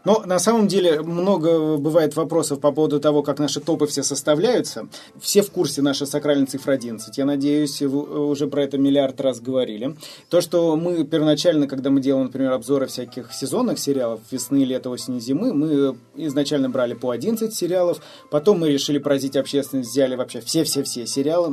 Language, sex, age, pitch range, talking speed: Russian, male, 30-49, 135-155 Hz, 175 wpm